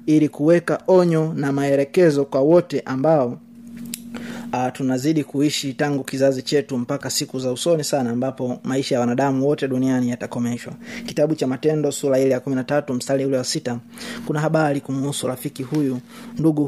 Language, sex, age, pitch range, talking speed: Swahili, male, 30-49, 135-175 Hz, 155 wpm